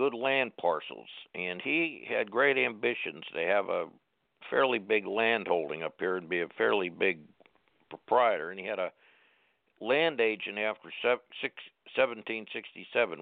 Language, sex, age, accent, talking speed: English, male, 60-79, American, 140 wpm